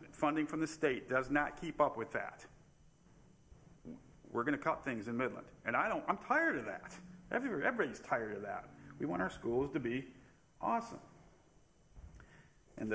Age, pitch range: 50-69, 120-150 Hz